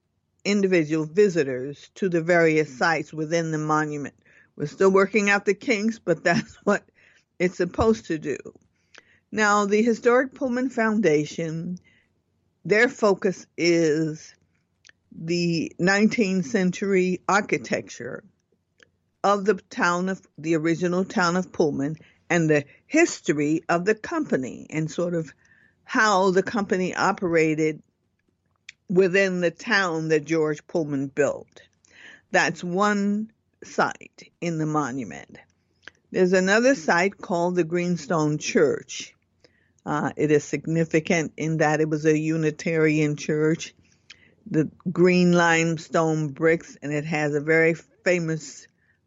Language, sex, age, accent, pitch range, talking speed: English, female, 50-69, American, 155-195 Hz, 120 wpm